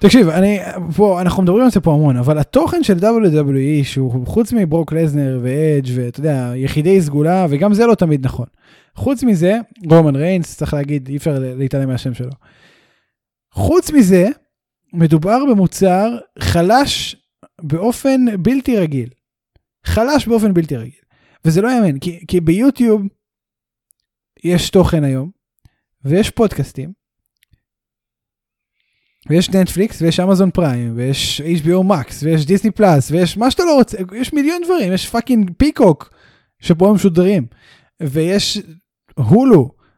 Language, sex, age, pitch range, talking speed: Hebrew, male, 20-39, 145-210 Hz, 130 wpm